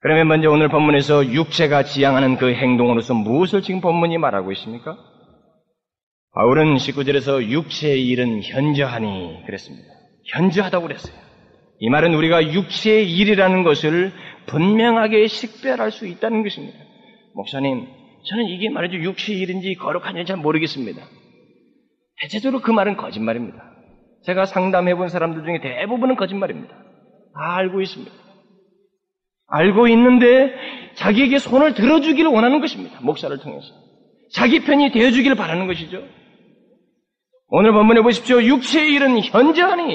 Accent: native